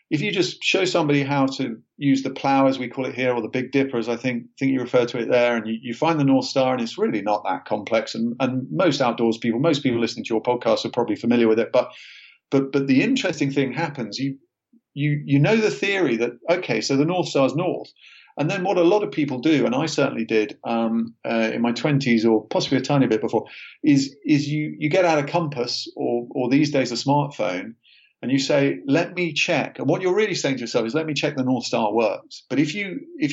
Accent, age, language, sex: British, 40-59, English, male